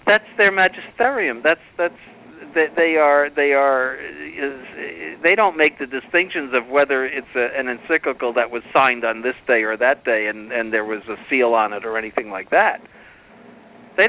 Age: 50-69